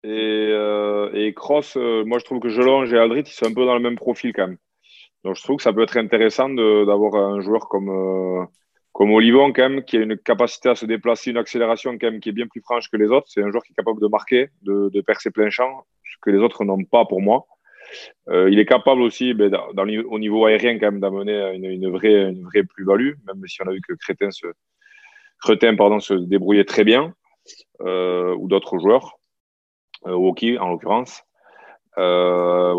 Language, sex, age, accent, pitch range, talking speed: French, male, 20-39, French, 95-120 Hz, 225 wpm